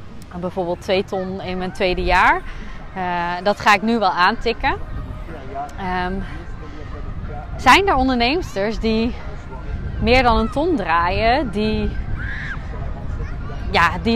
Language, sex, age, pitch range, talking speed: Dutch, female, 20-39, 205-285 Hz, 105 wpm